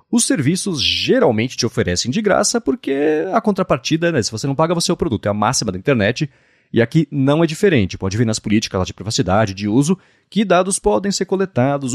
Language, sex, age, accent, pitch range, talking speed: Portuguese, male, 30-49, Brazilian, 110-175 Hz, 215 wpm